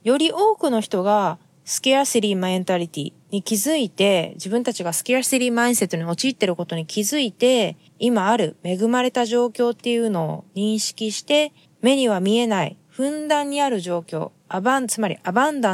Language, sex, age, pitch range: Japanese, female, 20-39, 180-240 Hz